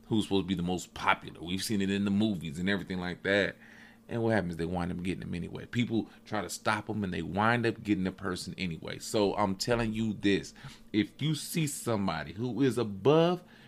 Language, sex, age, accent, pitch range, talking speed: English, male, 30-49, American, 95-135 Hz, 225 wpm